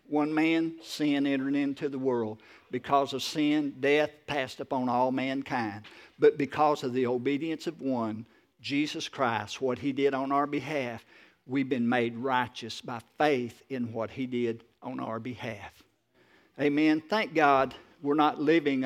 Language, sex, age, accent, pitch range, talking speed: English, male, 50-69, American, 125-150 Hz, 155 wpm